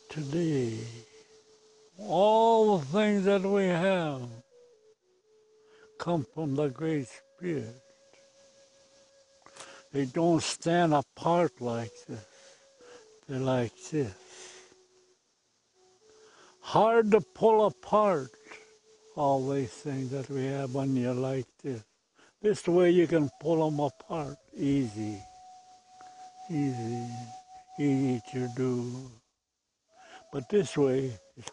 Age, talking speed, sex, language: 60-79, 95 wpm, male, English